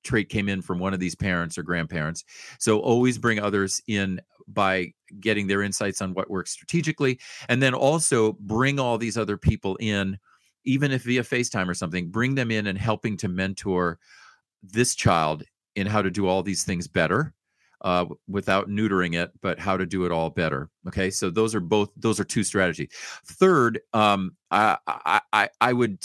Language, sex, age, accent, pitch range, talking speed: English, male, 40-59, American, 95-115 Hz, 185 wpm